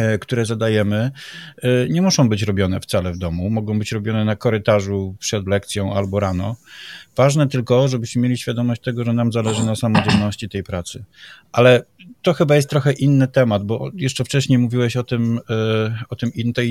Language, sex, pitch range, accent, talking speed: Polish, male, 105-125 Hz, native, 170 wpm